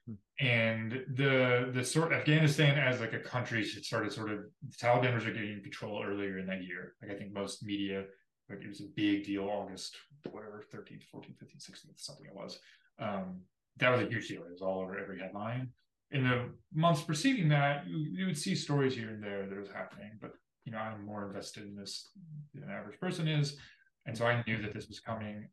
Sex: male